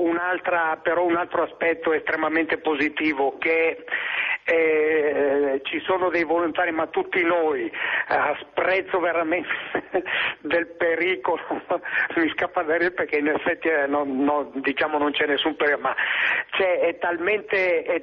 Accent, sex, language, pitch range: native, male, Italian, 160-195 Hz